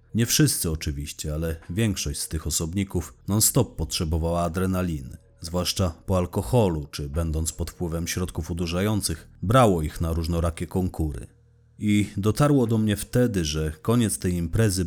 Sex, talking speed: male, 135 wpm